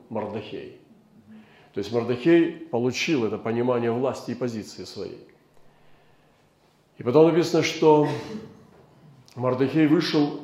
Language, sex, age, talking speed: Russian, male, 40-59, 100 wpm